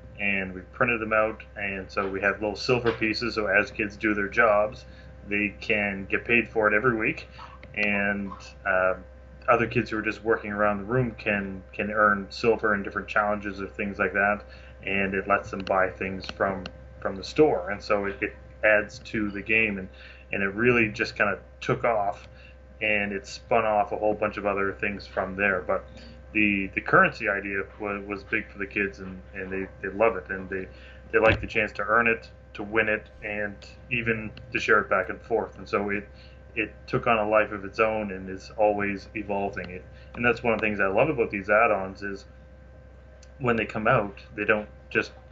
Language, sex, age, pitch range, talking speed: English, male, 20-39, 95-105 Hz, 210 wpm